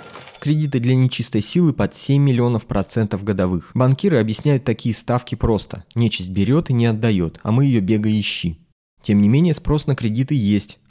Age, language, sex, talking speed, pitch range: 20-39, Russian, male, 165 wpm, 100-130 Hz